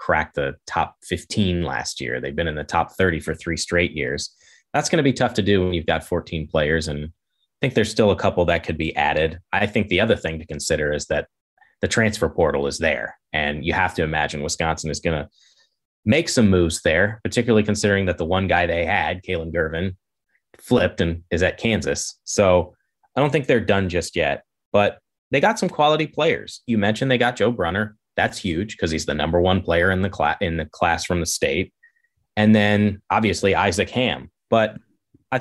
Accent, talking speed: American, 210 wpm